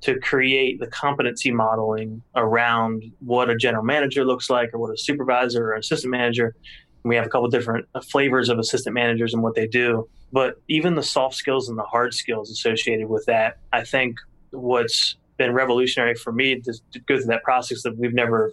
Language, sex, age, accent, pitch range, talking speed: English, male, 30-49, American, 115-130 Hz, 200 wpm